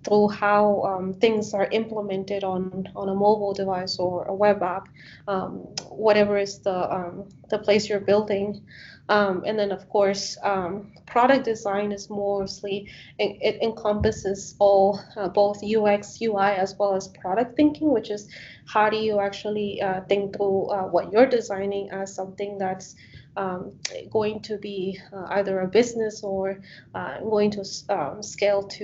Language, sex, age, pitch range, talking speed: English, female, 20-39, 195-215 Hz, 160 wpm